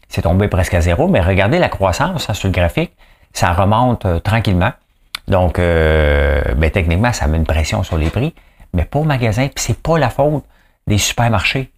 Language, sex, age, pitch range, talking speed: English, male, 50-69, 80-110 Hz, 190 wpm